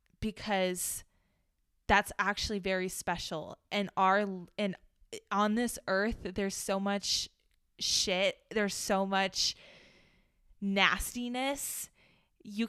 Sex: female